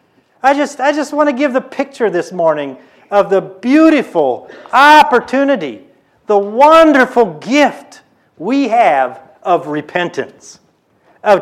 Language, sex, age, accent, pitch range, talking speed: English, male, 50-69, American, 215-300 Hz, 120 wpm